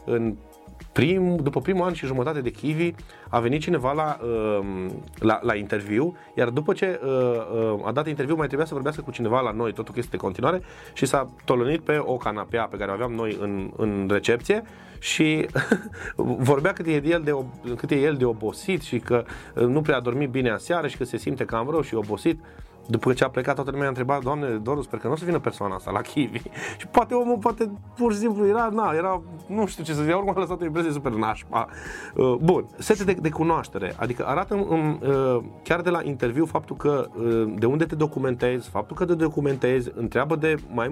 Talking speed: 215 wpm